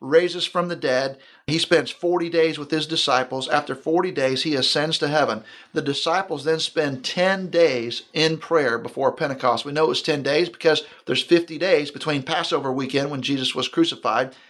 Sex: male